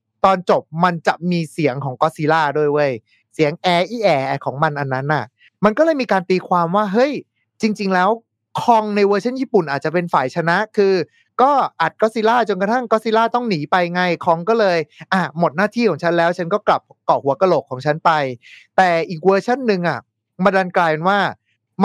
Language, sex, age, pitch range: Thai, male, 20-39, 155-220 Hz